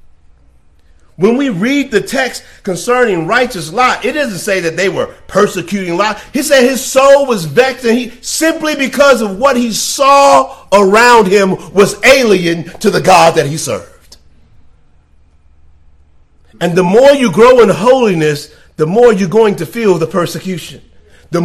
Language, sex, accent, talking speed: English, male, American, 150 wpm